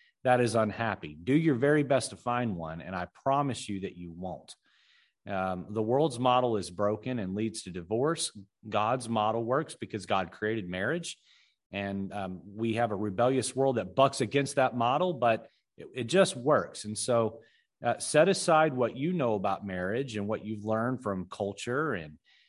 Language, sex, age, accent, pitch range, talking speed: English, male, 30-49, American, 105-145 Hz, 180 wpm